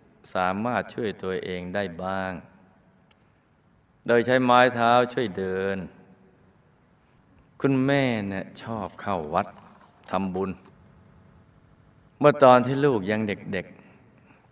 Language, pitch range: Thai, 95-110 Hz